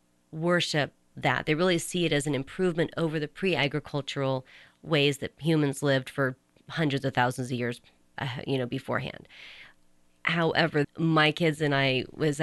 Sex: female